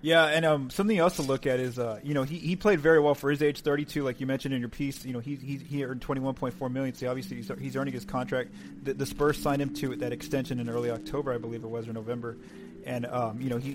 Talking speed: 290 wpm